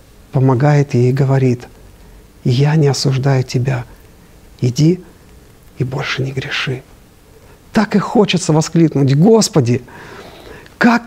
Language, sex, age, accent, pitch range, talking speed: Russian, male, 50-69, native, 130-185 Hz, 105 wpm